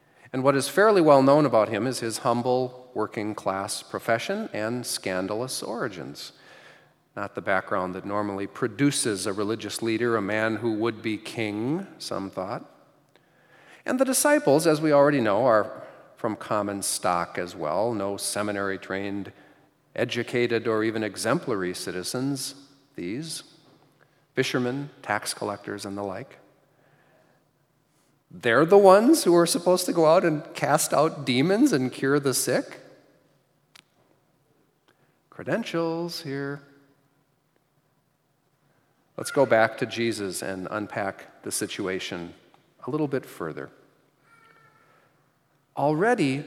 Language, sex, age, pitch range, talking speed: English, male, 40-59, 105-145 Hz, 120 wpm